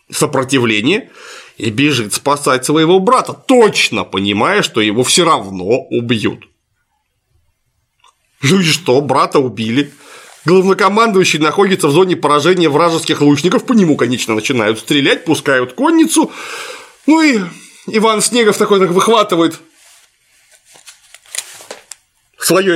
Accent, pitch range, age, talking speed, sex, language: native, 130-210 Hz, 30-49, 105 wpm, male, Russian